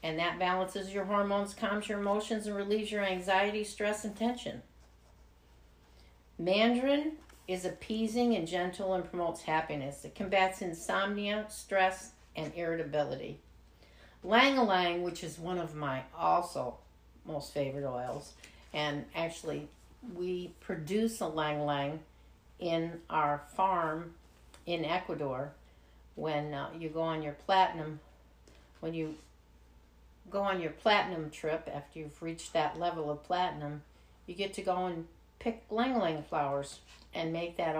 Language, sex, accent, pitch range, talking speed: English, female, American, 145-195 Hz, 130 wpm